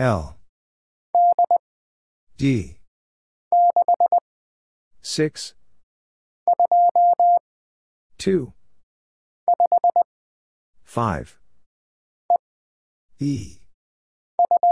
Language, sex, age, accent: English, male, 50-69, American